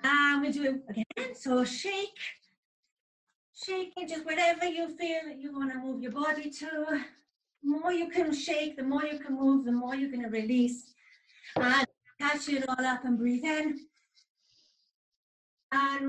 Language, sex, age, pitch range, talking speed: English, female, 40-59, 250-320 Hz, 170 wpm